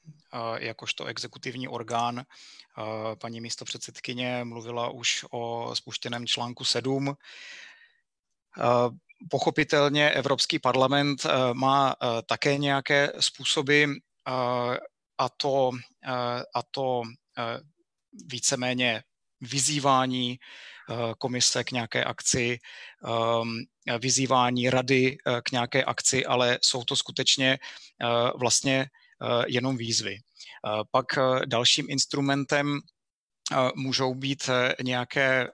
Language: Czech